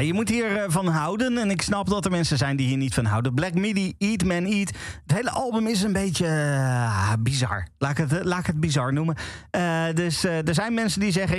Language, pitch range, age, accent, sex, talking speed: Dutch, 130-190 Hz, 40-59, Dutch, male, 225 wpm